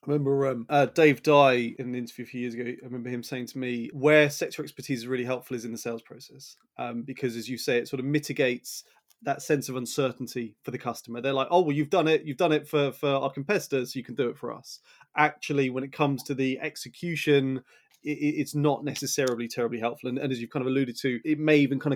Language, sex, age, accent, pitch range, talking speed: English, male, 30-49, British, 125-145 Hz, 255 wpm